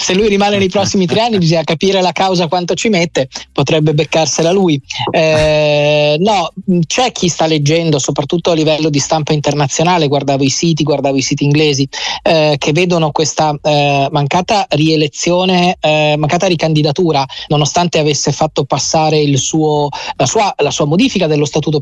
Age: 30-49